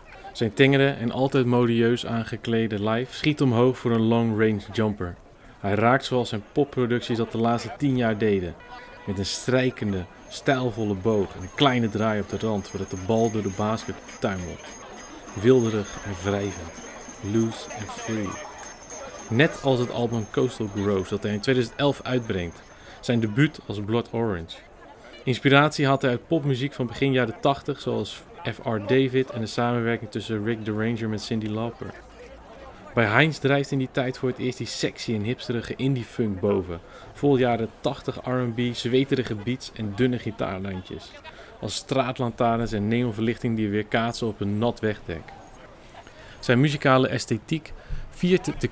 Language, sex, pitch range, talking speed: Dutch, male, 105-125 Hz, 160 wpm